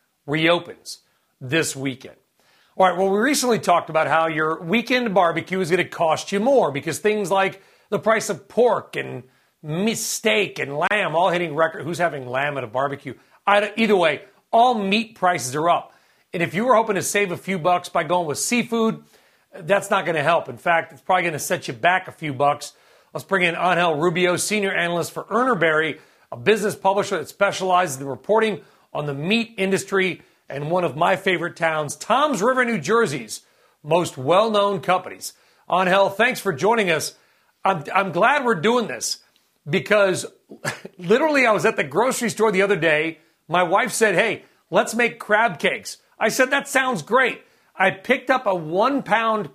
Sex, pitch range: male, 170-220 Hz